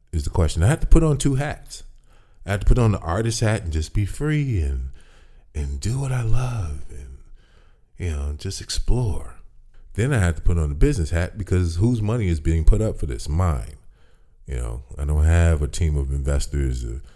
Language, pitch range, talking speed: English, 80-115 Hz, 215 wpm